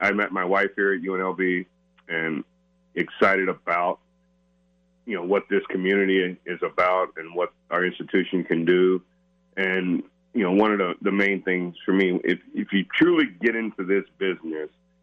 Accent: American